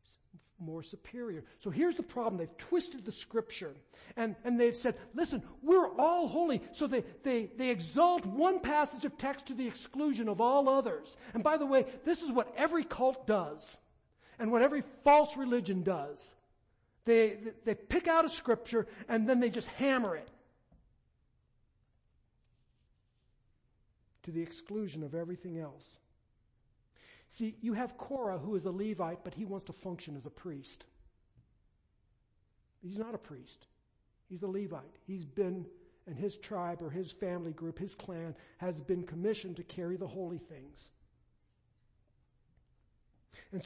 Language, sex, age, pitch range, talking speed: English, male, 60-79, 175-245 Hz, 150 wpm